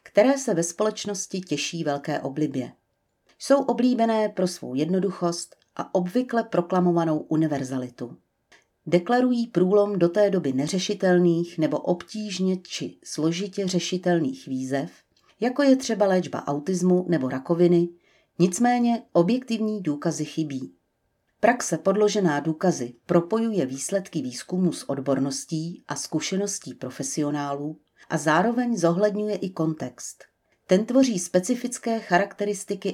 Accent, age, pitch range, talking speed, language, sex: native, 40-59, 150-195 Hz, 105 wpm, Czech, female